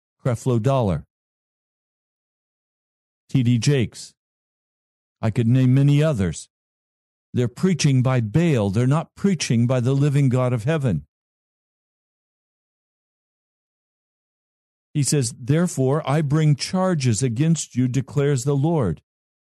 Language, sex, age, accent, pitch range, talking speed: English, male, 50-69, American, 120-155 Hz, 100 wpm